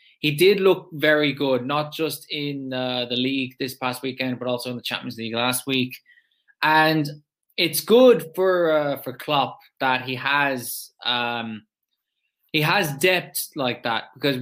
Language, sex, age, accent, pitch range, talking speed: English, male, 20-39, Irish, 125-155 Hz, 160 wpm